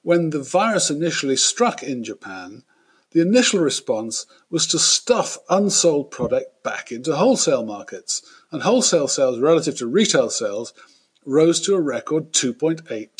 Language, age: English, 50-69